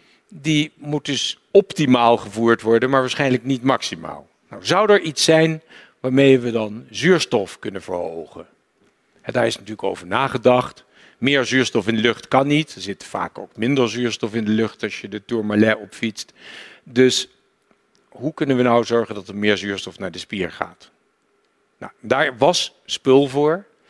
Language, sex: Dutch, male